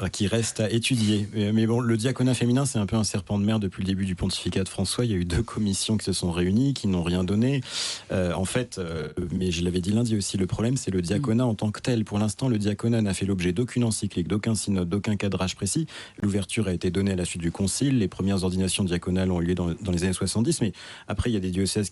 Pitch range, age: 90-105 Hz, 30-49